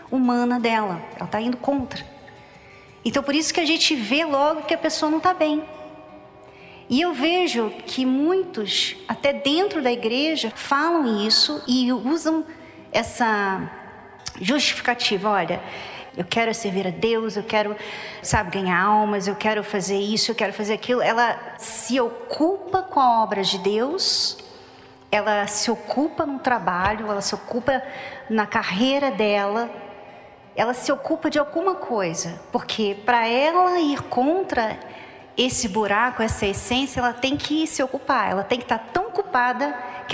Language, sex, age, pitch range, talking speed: Portuguese, female, 40-59, 215-305 Hz, 150 wpm